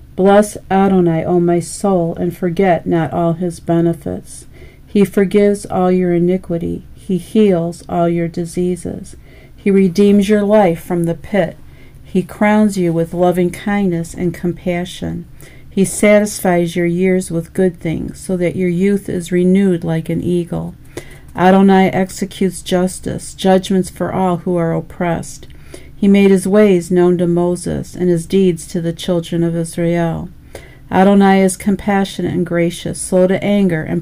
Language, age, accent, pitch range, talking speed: English, 50-69, American, 170-190 Hz, 150 wpm